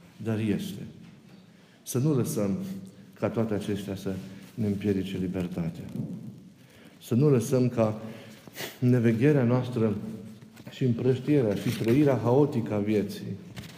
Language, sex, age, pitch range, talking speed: Romanian, male, 50-69, 105-140 Hz, 110 wpm